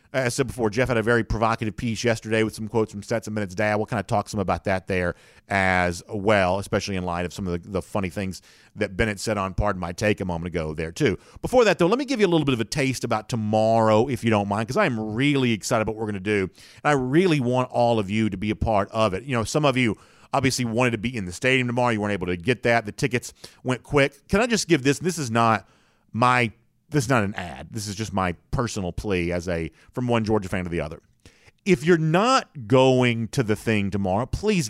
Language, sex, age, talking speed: English, male, 40-59, 265 wpm